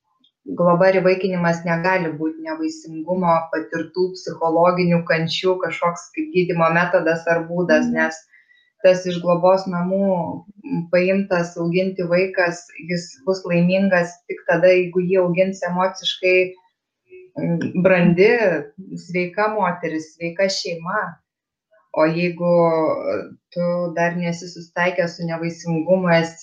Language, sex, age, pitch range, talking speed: English, female, 20-39, 170-185 Hz, 100 wpm